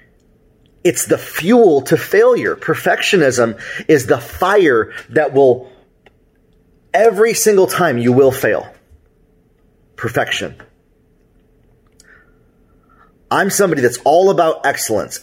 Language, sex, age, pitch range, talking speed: English, male, 30-49, 125-165 Hz, 95 wpm